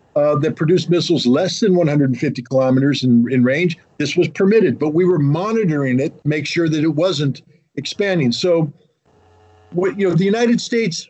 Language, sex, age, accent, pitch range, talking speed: English, male, 50-69, American, 145-175 Hz, 180 wpm